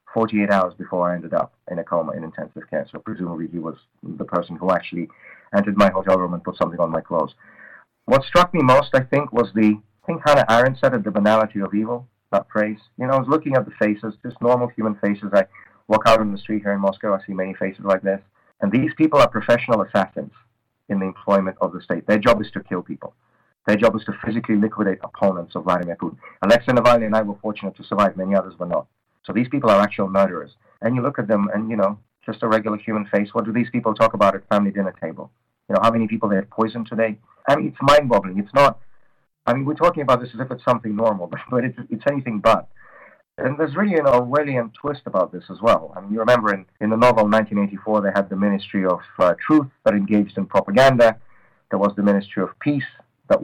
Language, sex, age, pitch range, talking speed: English, male, 30-49, 100-120 Hz, 240 wpm